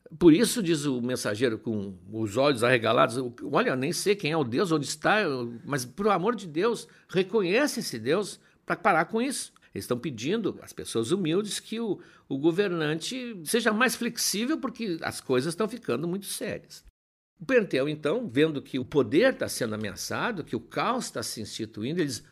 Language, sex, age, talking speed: Portuguese, male, 60-79, 175 wpm